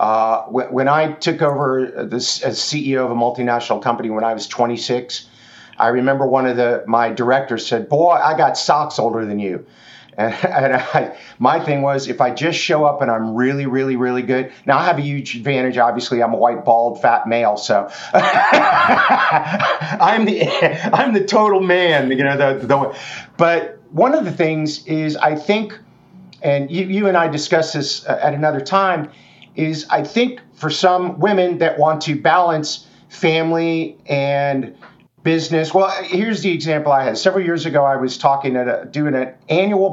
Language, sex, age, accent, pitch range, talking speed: English, male, 50-69, American, 130-165 Hz, 180 wpm